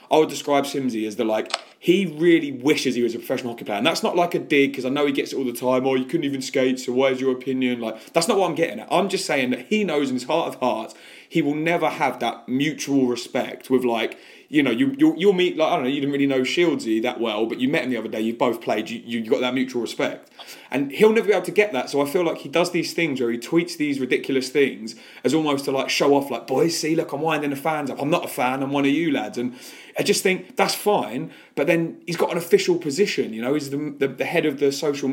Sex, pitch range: male, 125-170 Hz